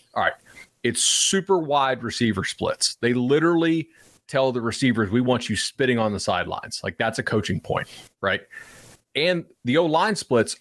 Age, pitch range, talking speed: 30-49, 120-165 Hz, 165 wpm